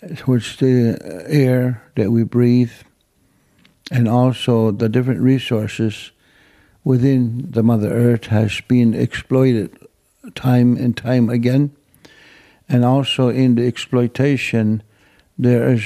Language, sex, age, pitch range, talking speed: German, male, 60-79, 120-135 Hz, 110 wpm